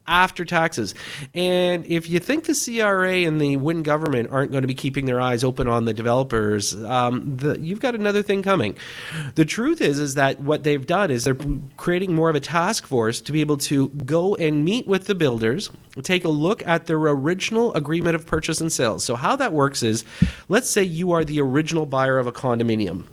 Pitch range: 130-170 Hz